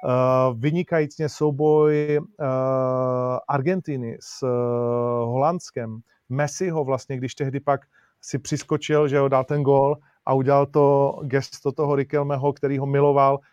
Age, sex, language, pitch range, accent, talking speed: 30-49, male, Czech, 130-160 Hz, native, 135 wpm